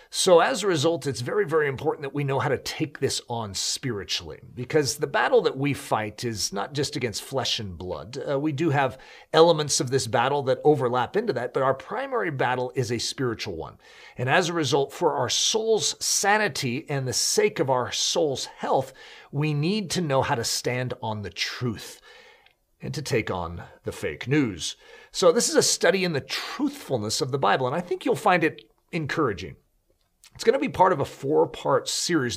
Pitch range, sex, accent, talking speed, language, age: 125-165 Hz, male, American, 200 wpm, English, 40-59